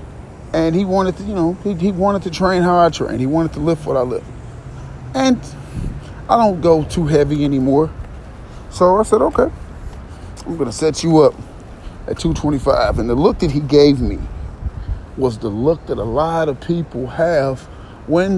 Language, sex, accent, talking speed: English, male, American, 185 wpm